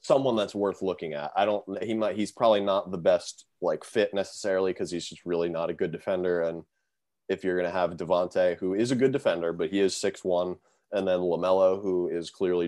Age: 20-39